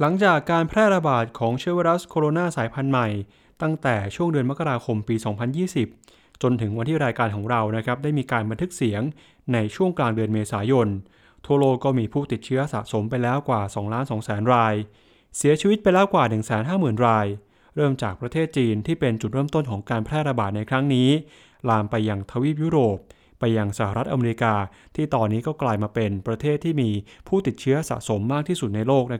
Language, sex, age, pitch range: English, male, 20-39, 110-150 Hz